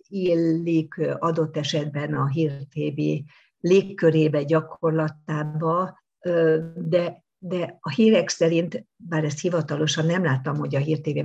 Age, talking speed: 50-69, 105 wpm